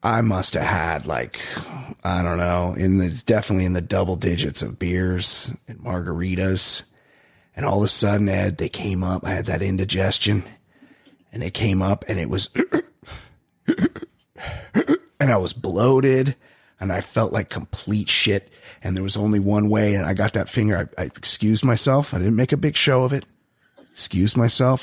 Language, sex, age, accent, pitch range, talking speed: English, male, 30-49, American, 95-125 Hz, 180 wpm